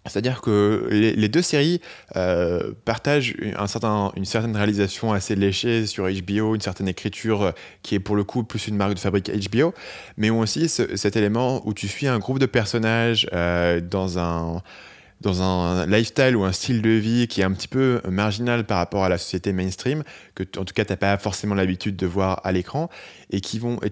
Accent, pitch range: French, 95-115 Hz